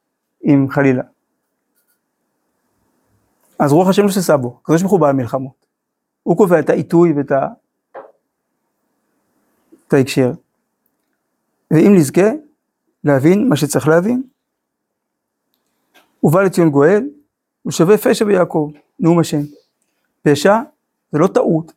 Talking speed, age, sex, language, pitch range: 95 wpm, 50-69, male, Hebrew, 145-200 Hz